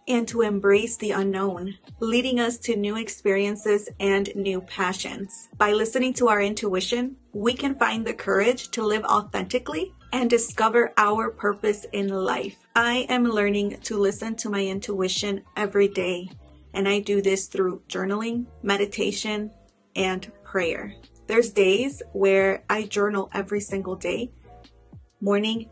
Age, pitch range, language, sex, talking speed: 30-49, 190-215 Hz, English, female, 140 wpm